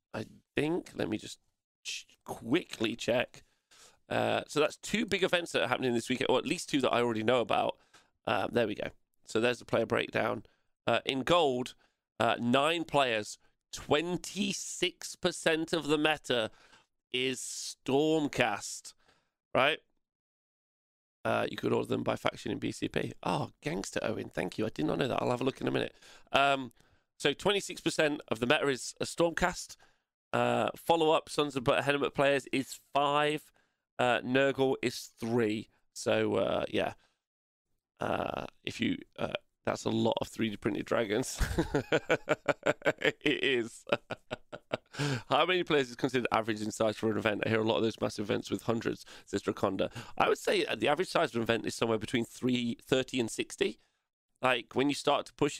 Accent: British